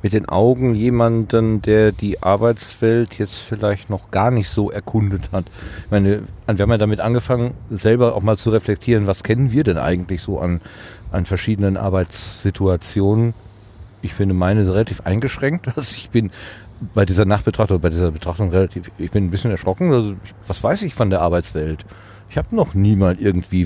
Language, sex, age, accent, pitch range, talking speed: German, male, 40-59, German, 95-110 Hz, 170 wpm